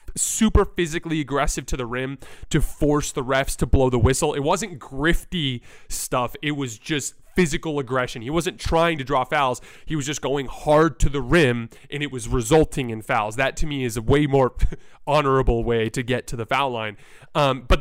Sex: male